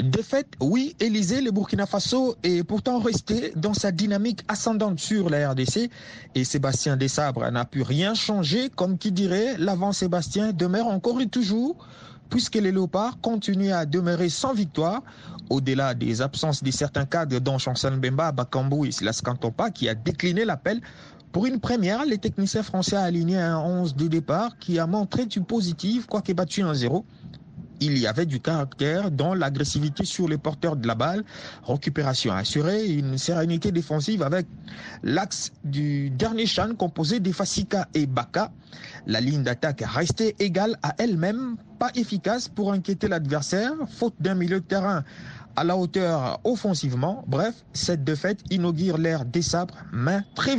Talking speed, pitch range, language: 160 wpm, 150-210 Hz, French